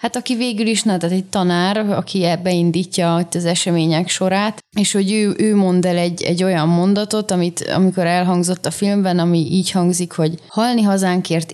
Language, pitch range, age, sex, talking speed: Hungarian, 170-195 Hz, 20-39, female, 175 wpm